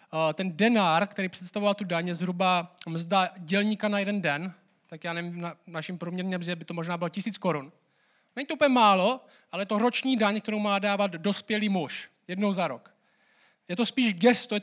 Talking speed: 185 wpm